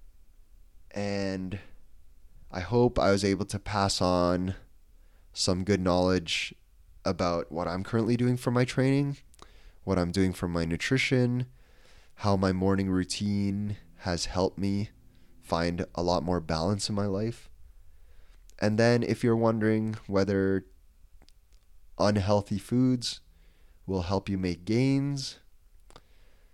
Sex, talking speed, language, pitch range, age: male, 120 wpm, English, 85-100 Hz, 20-39